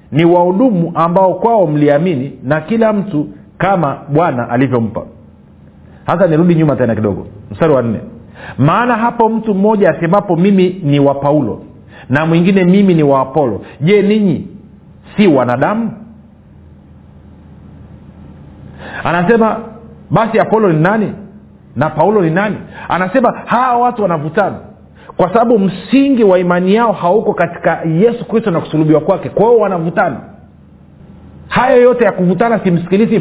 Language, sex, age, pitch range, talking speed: Swahili, male, 50-69, 145-205 Hz, 130 wpm